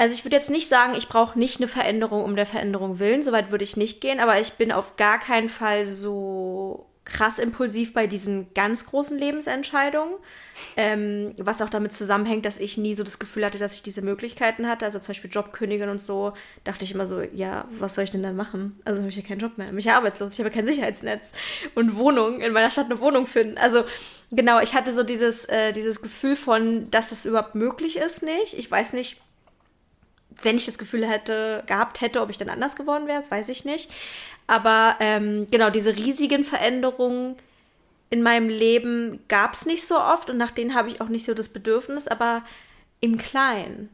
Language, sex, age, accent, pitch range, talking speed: German, female, 20-39, German, 210-250 Hz, 210 wpm